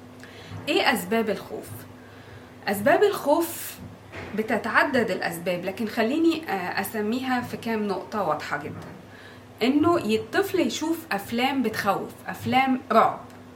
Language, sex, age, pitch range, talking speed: Arabic, female, 20-39, 200-265 Hz, 95 wpm